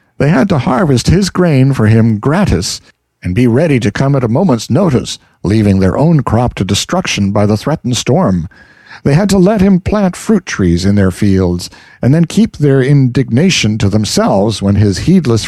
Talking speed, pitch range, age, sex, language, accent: 185 wpm, 105-145 Hz, 60-79, male, English, American